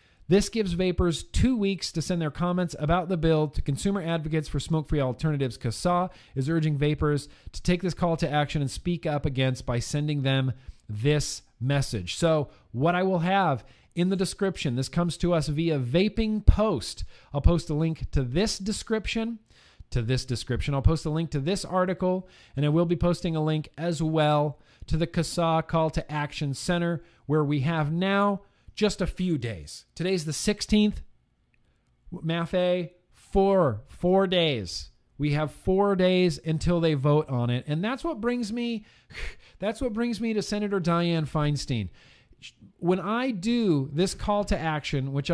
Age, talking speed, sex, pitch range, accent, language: 40-59, 170 wpm, male, 140-185 Hz, American, English